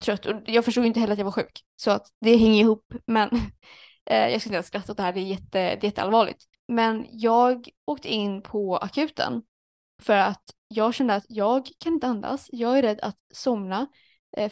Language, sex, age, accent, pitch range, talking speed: Swedish, female, 20-39, native, 210-250 Hz, 205 wpm